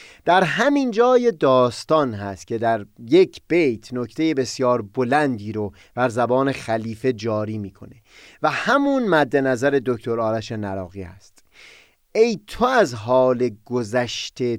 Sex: male